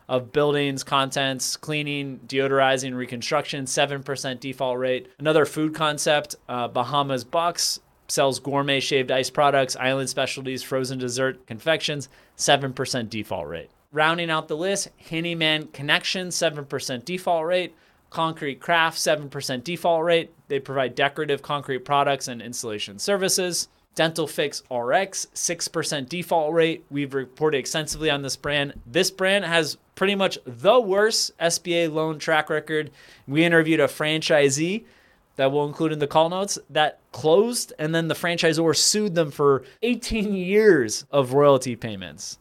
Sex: male